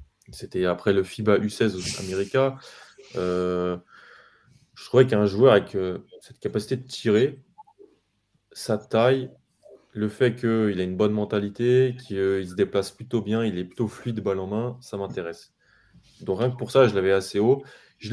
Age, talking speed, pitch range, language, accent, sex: 20-39, 175 wpm, 95-120 Hz, French, French, male